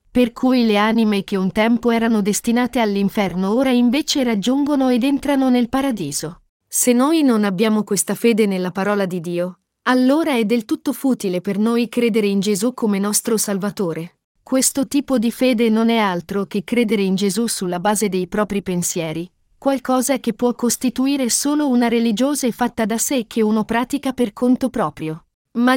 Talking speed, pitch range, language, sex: 170 wpm, 205-260 Hz, Italian, female